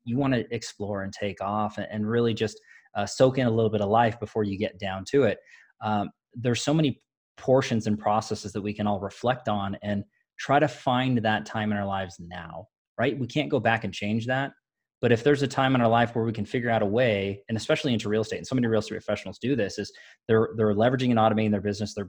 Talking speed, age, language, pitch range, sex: 245 wpm, 20-39, English, 110-145 Hz, male